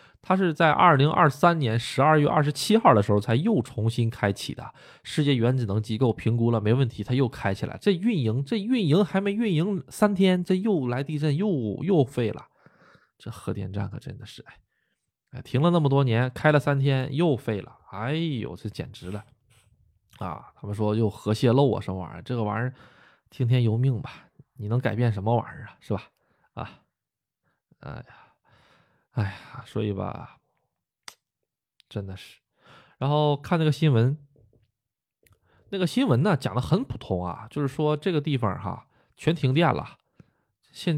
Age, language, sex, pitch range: 20-39, Chinese, male, 110-150 Hz